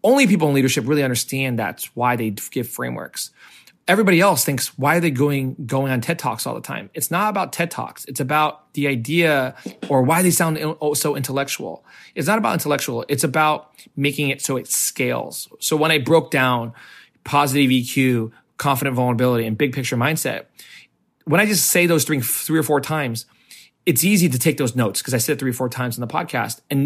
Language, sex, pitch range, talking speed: English, male, 130-160 Hz, 205 wpm